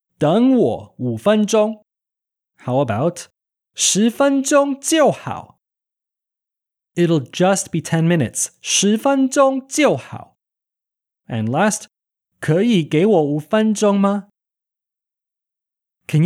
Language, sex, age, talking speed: English, male, 20-39, 45 wpm